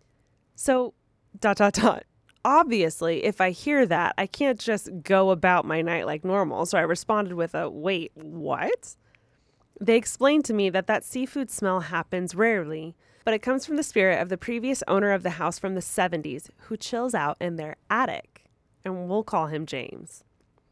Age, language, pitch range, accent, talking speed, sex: 20-39, English, 175-225 Hz, American, 180 wpm, female